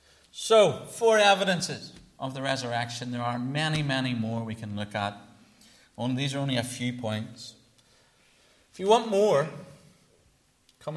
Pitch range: 90-125 Hz